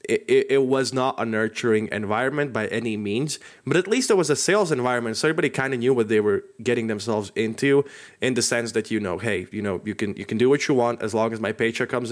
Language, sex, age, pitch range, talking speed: English, male, 20-39, 110-140 Hz, 260 wpm